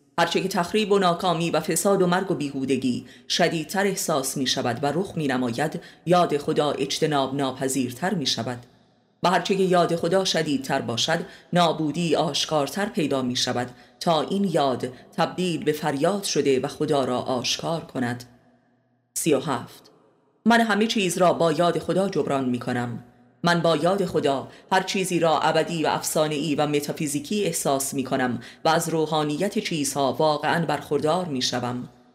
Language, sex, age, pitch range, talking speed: Persian, female, 30-49, 135-180 Hz, 155 wpm